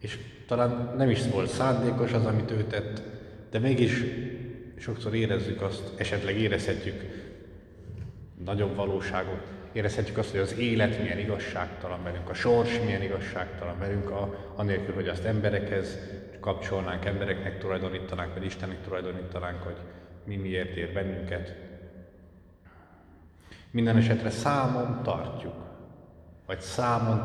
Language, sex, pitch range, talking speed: Hungarian, male, 85-110 Hz, 115 wpm